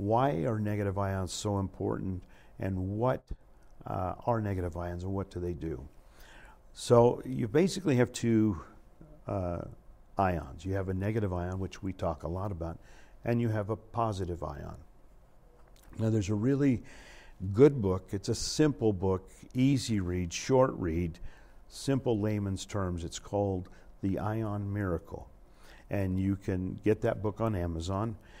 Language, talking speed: English, 150 wpm